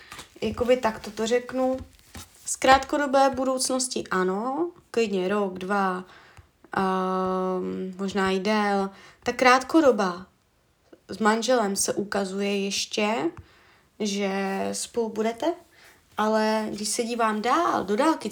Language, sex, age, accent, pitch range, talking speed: Czech, female, 20-39, native, 200-250 Hz, 105 wpm